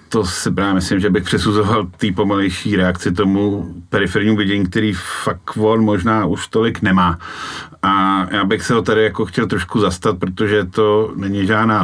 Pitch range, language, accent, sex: 90-110 Hz, Czech, native, male